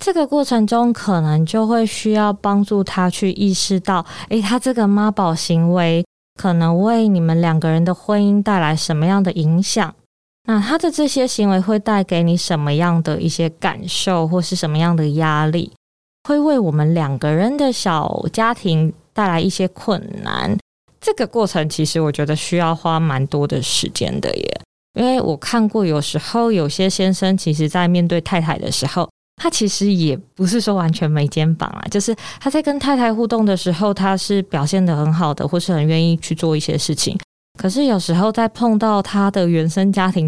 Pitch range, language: 165-210 Hz, Chinese